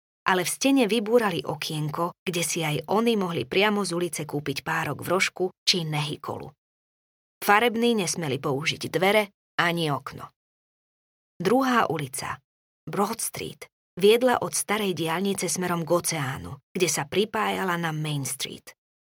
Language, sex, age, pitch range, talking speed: Slovak, female, 20-39, 155-190 Hz, 130 wpm